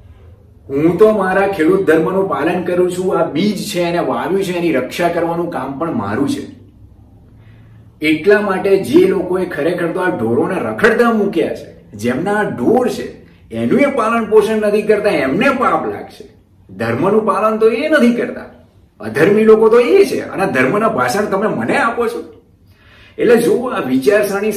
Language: Gujarati